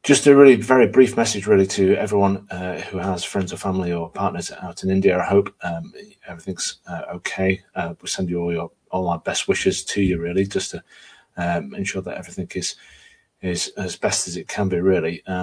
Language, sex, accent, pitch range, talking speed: English, male, British, 90-110 Hz, 215 wpm